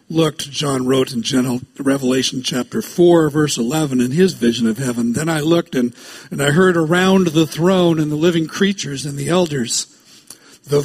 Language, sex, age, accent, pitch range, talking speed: English, male, 60-79, American, 145-180 Hz, 185 wpm